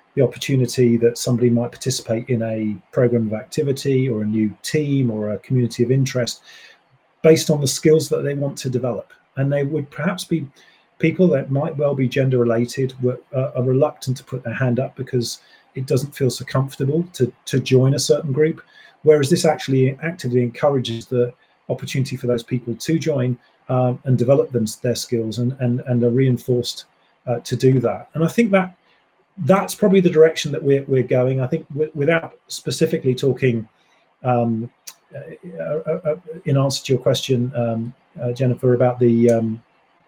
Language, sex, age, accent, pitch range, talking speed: English, male, 40-59, British, 120-145 Hz, 175 wpm